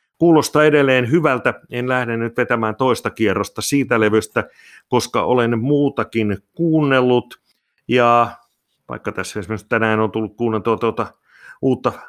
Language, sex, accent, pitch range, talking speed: Finnish, male, native, 105-130 Hz, 125 wpm